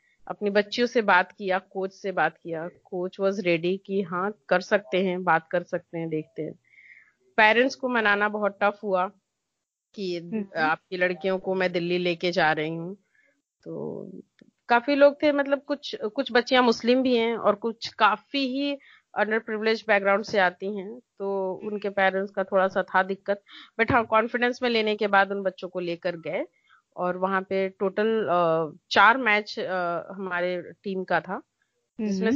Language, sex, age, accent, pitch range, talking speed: English, female, 30-49, Indian, 180-220 Hz, 130 wpm